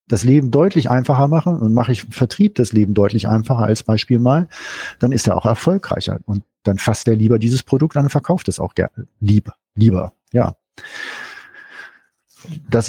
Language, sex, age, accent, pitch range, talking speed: German, male, 50-69, German, 105-130 Hz, 170 wpm